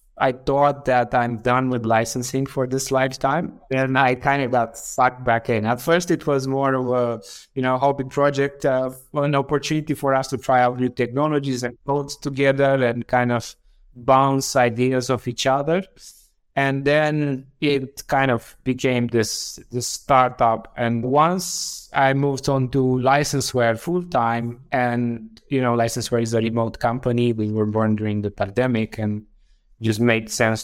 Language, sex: English, male